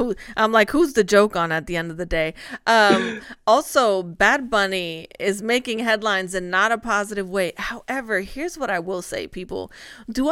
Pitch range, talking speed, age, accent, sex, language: 185-240 Hz, 185 wpm, 30-49, American, female, English